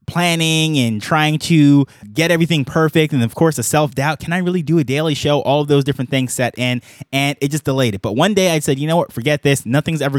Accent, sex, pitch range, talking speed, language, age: American, male, 125-155 Hz, 255 wpm, English, 20-39